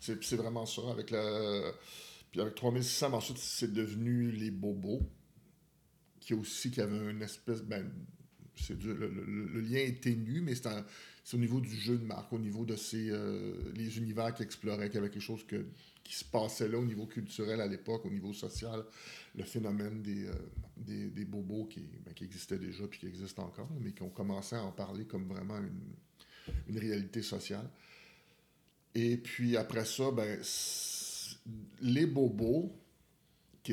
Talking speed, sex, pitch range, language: 185 wpm, male, 100-115 Hz, French